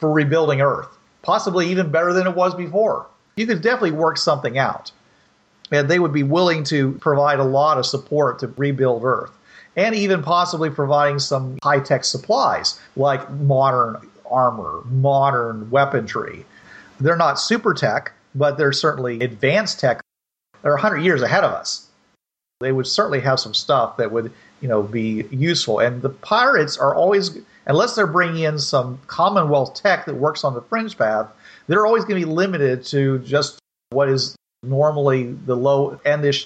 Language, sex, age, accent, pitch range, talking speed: English, male, 40-59, American, 130-165 Hz, 165 wpm